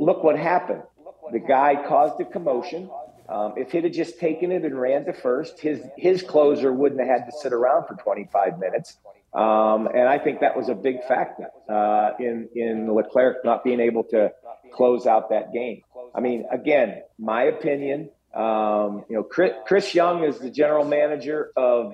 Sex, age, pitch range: male, 50-69, 120-150 Hz